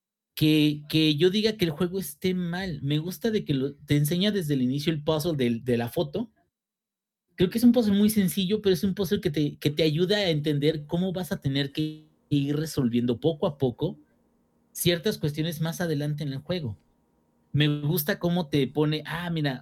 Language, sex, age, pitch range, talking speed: Spanish, male, 40-59, 130-175 Hz, 200 wpm